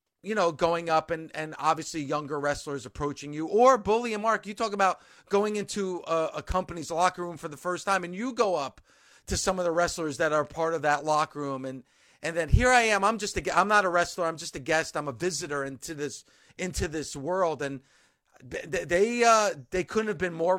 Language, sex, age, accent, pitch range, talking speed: English, male, 40-59, American, 145-175 Hz, 225 wpm